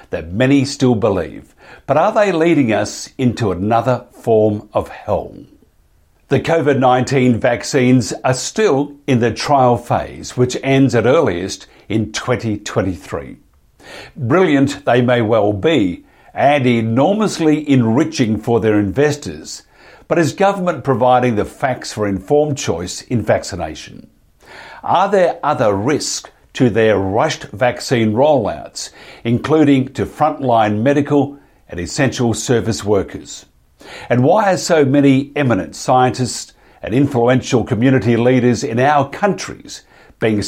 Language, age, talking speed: English, 60-79, 125 wpm